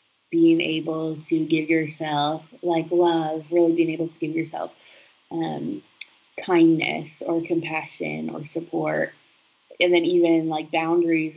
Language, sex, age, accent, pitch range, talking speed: English, female, 20-39, American, 155-170 Hz, 125 wpm